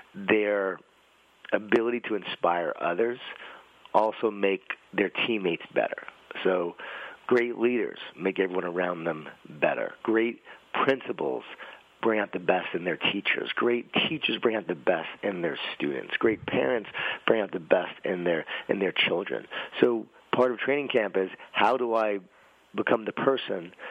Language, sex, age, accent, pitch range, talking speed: English, male, 40-59, American, 100-125 Hz, 150 wpm